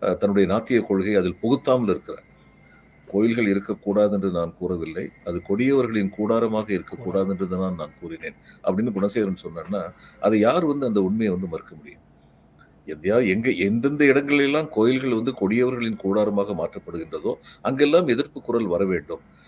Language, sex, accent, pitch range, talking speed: Tamil, male, native, 100-145 Hz, 135 wpm